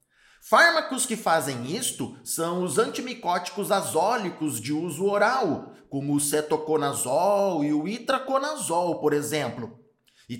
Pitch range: 150-230 Hz